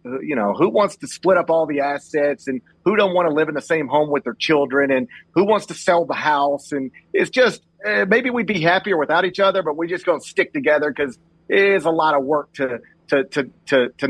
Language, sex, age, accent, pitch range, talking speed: English, male, 40-59, American, 145-185 Hz, 255 wpm